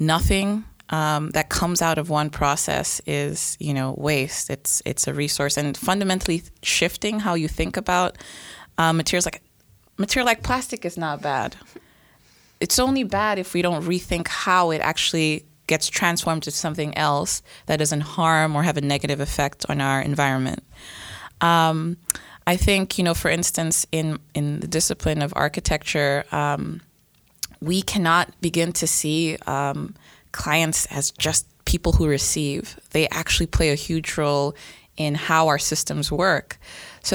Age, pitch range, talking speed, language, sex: 20-39, 145-175 Hz, 155 wpm, English, female